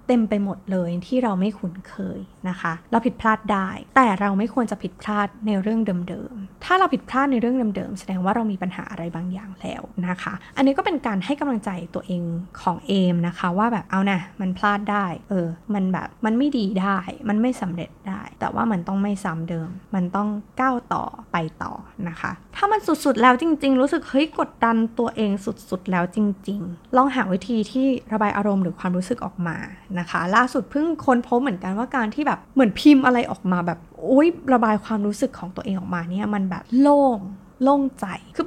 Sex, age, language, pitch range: female, 20-39, Thai, 185-250 Hz